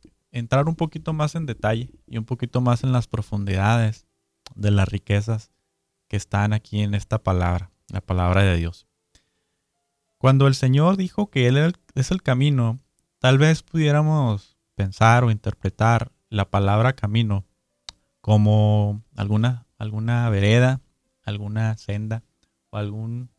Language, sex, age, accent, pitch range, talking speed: Spanish, male, 30-49, Mexican, 105-130 Hz, 135 wpm